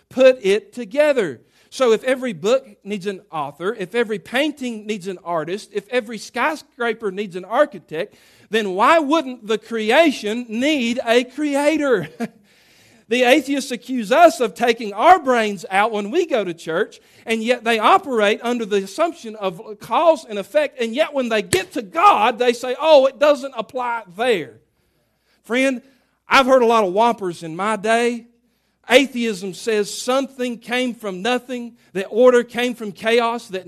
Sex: male